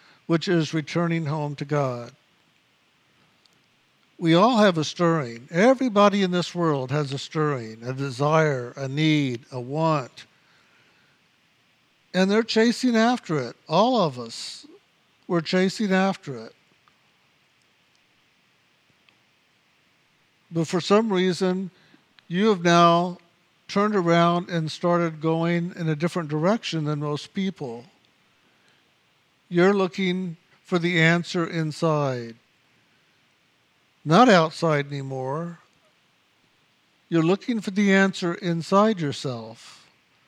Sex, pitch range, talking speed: male, 150-195 Hz, 105 wpm